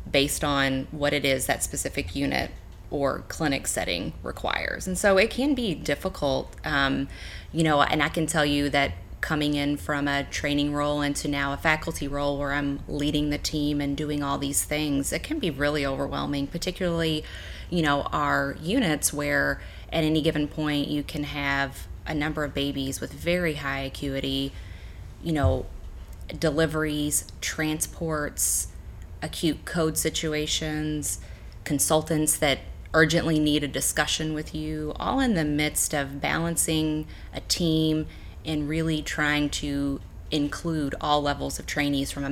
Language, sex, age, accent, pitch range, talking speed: English, female, 20-39, American, 140-155 Hz, 155 wpm